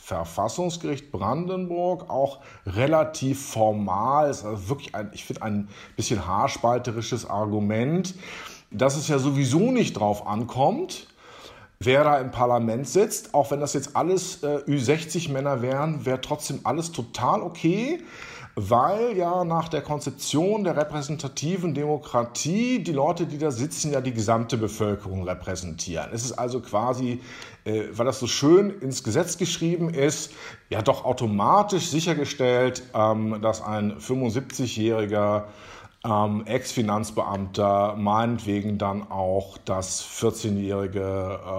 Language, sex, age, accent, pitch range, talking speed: German, male, 50-69, German, 110-150 Hz, 125 wpm